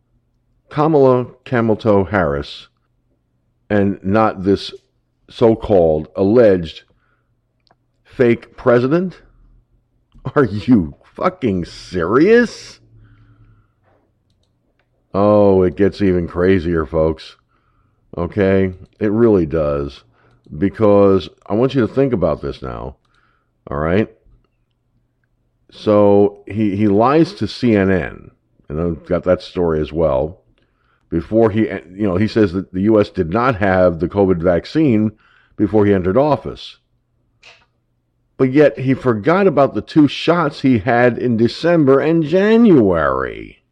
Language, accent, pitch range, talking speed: English, American, 100-125 Hz, 110 wpm